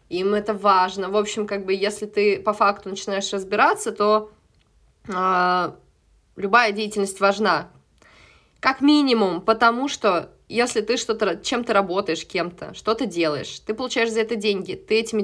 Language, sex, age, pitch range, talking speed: Russian, female, 20-39, 195-220 Hz, 150 wpm